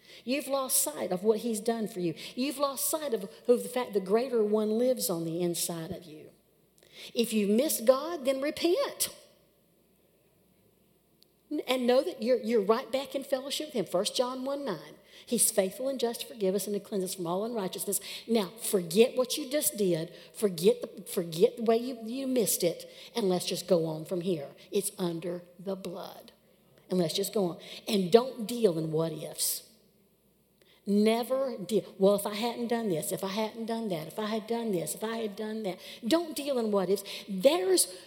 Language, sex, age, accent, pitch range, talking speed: English, female, 60-79, American, 190-240 Hz, 195 wpm